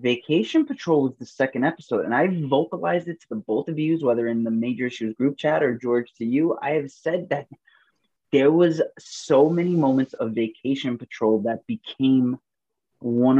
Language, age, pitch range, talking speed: English, 20-39, 125-175 Hz, 185 wpm